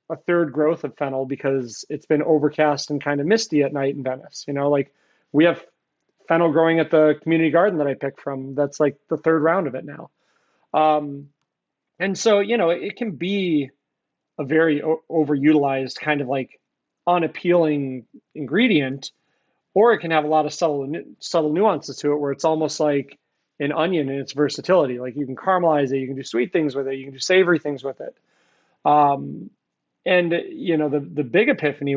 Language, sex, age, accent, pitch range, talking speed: English, male, 30-49, American, 140-165 Hz, 195 wpm